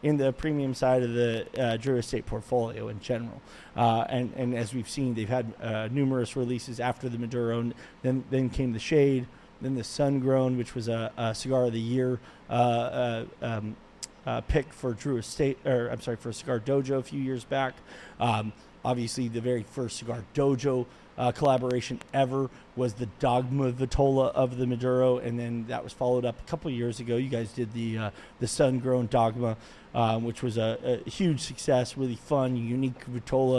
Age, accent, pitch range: 30-49, American, 120-135 Hz